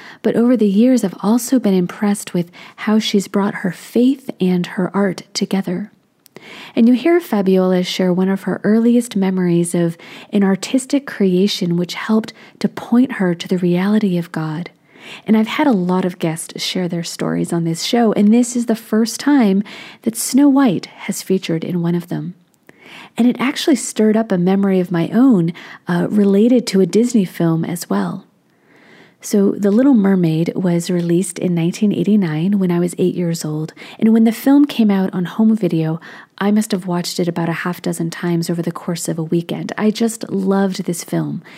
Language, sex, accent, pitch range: English, female, American, 180-225 Hz